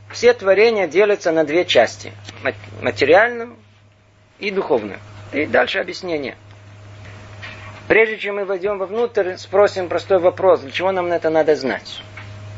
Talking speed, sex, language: 125 wpm, male, Russian